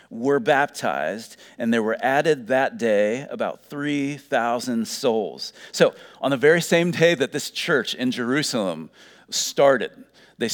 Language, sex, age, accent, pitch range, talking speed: English, male, 40-59, American, 115-170 Hz, 135 wpm